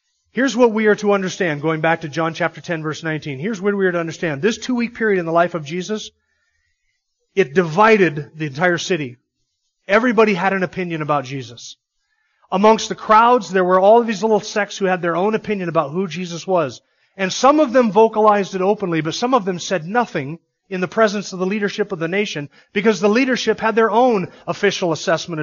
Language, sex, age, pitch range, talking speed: English, male, 30-49, 165-220 Hz, 205 wpm